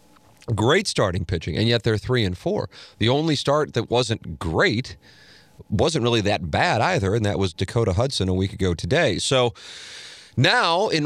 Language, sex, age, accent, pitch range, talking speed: English, male, 40-59, American, 85-110 Hz, 175 wpm